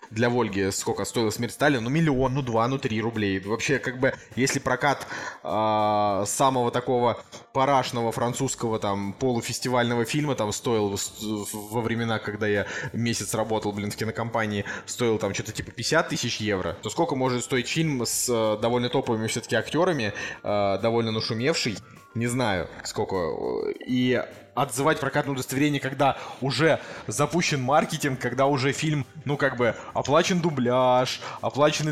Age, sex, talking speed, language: 20-39, male, 145 wpm, Russian